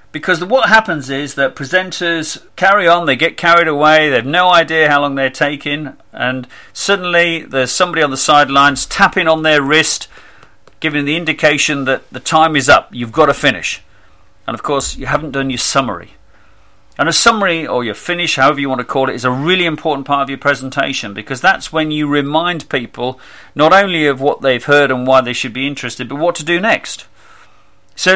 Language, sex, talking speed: English, male, 200 wpm